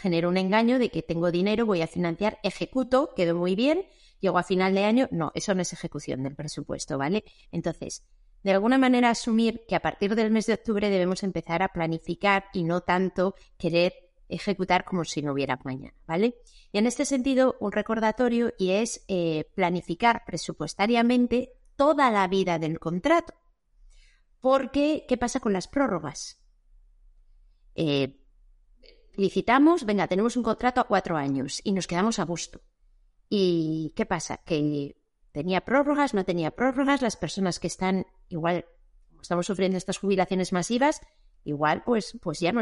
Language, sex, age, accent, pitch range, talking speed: Spanish, female, 30-49, Spanish, 175-235 Hz, 160 wpm